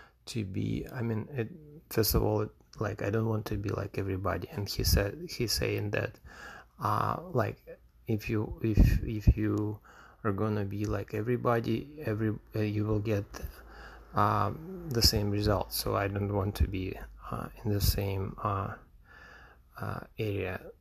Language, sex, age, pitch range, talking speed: English, male, 20-39, 100-110 Hz, 160 wpm